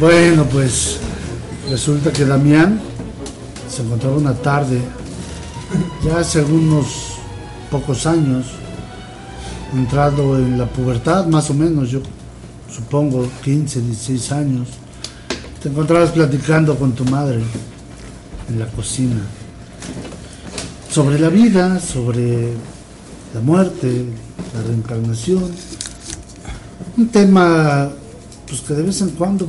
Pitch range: 110-150 Hz